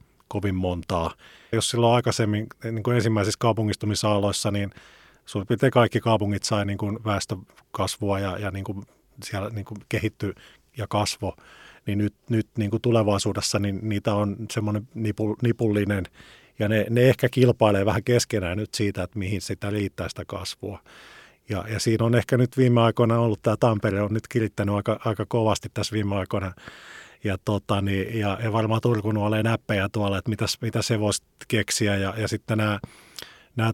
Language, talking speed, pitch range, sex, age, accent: Finnish, 165 wpm, 100-115 Hz, male, 30-49, native